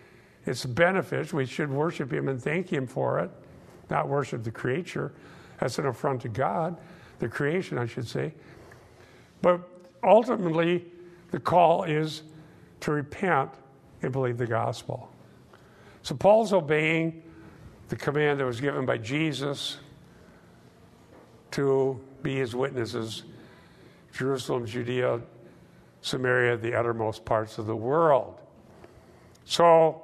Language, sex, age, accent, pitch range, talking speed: English, male, 50-69, American, 125-170 Hz, 120 wpm